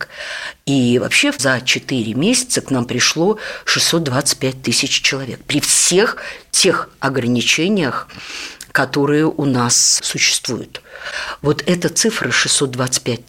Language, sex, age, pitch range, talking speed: Russian, female, 50-69, 125-145 Hz, 105 wpm